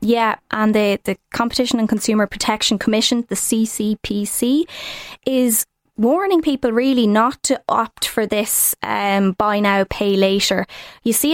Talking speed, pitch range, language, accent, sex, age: 145 wpm, 195-230 Hz, English, Irish, female, 20-39